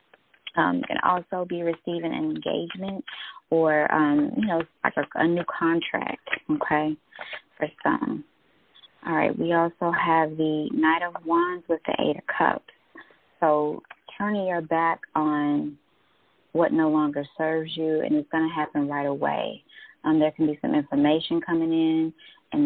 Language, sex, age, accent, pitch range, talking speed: English, female, 20-39, American, 140-165 Hz, 155 wpm